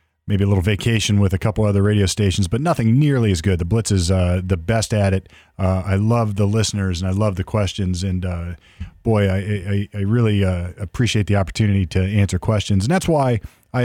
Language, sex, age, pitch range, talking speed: English, male, 40-59, 95-115 Hz, 220 wpm